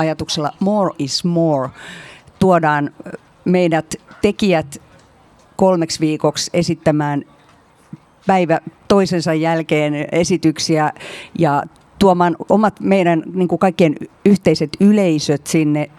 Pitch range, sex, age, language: 150-175 Hz, female, 50-69, Finnish